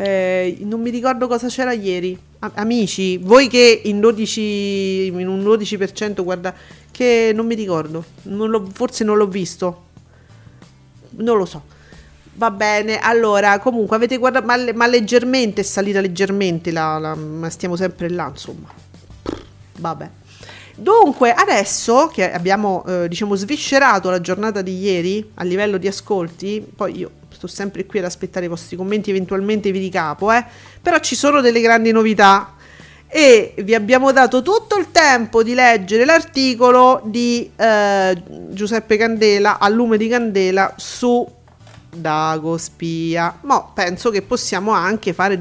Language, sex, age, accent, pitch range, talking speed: Italian, female, 40-59, native, 185-235 Hz, 145 wpm